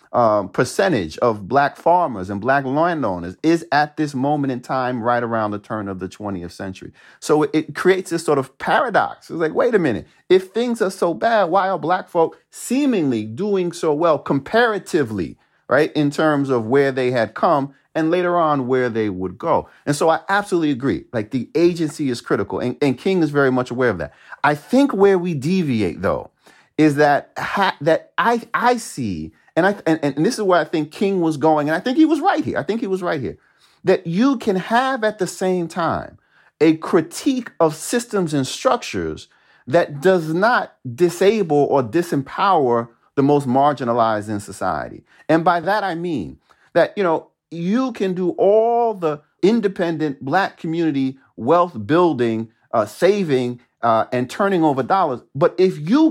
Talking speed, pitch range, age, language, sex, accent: 185 wpm, 130-190 Hz, 40-59, English, male, American